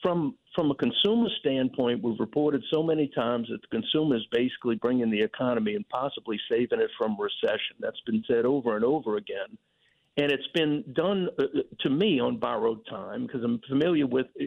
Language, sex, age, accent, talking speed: English, male, 50-69, American, 185 wpm